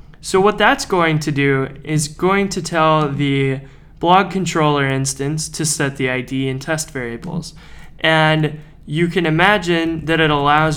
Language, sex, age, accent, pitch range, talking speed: English, male, 20-39, American, 140-170 Hz, 155 wpm